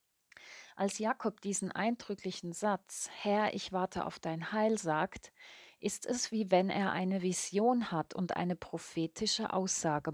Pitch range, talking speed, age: 170-205 Hz, 140 wpm, 30-49